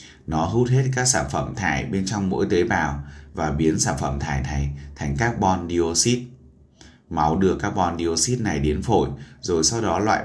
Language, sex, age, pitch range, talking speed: Vietnamese, male, 20-39, 75-95 Hz, 180 wpm